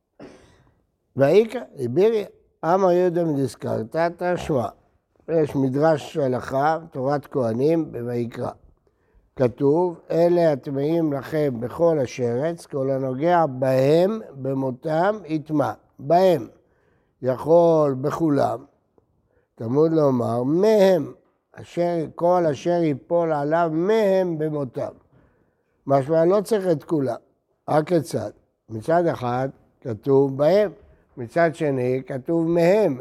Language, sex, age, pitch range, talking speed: Hebrew, male, 60-79, 135-185 Hz, 95 wpm